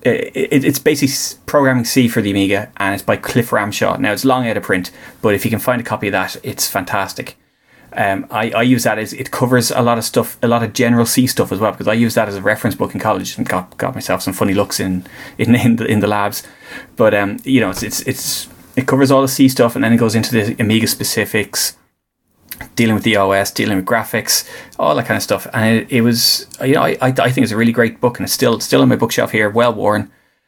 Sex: male